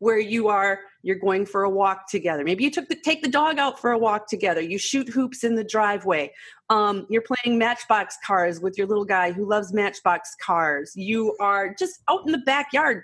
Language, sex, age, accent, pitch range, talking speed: English, female, 30-49, American, 180-245 Hz, 215 wpm